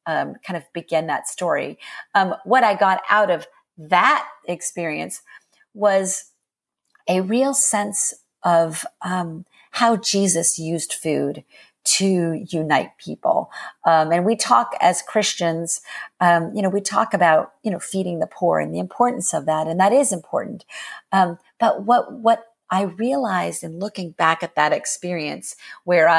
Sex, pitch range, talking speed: female, 160-205 Hz, 150 wpm